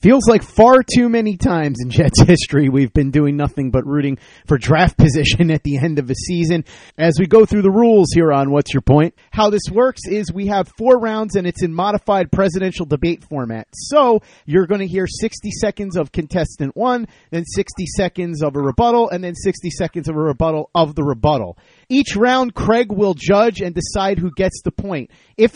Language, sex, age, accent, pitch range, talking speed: English, male, 30-49, American, 155-215 Hz, 205 wpm